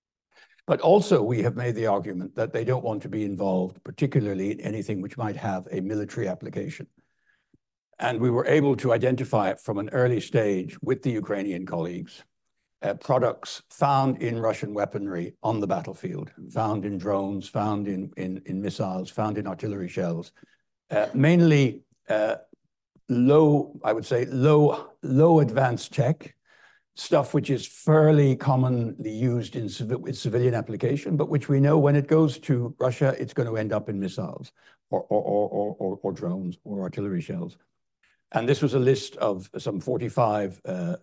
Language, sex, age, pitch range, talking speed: English, male, 60-79, 105-140 Hz, 160 wpm